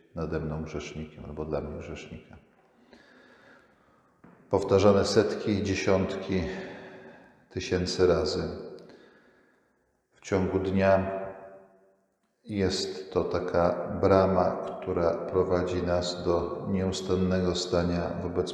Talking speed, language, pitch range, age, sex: 85 wpm, Polish, 90-95 Hz, 40-59, male